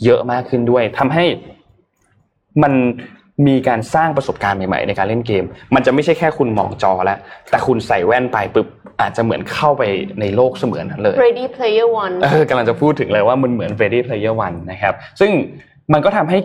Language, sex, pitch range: Thai, male, 105-155 Hz